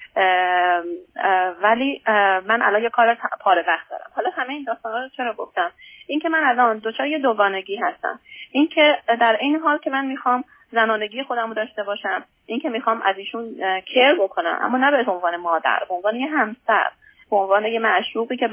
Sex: female